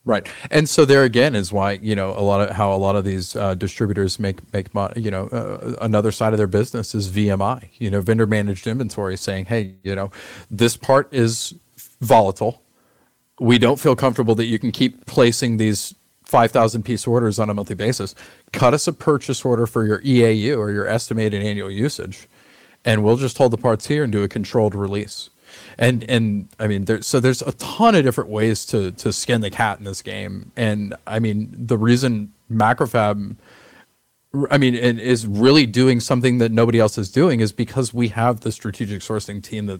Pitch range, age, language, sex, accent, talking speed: 100-120 Hz, 40-59, English, male, American, 200 wpm